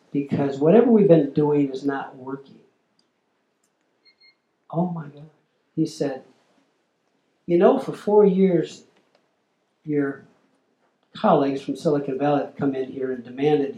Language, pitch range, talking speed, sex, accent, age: English, 140-210 Hz, 125 wpm, male, American, 60-79